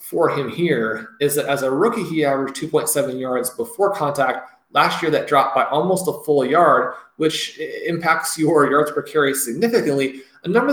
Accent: American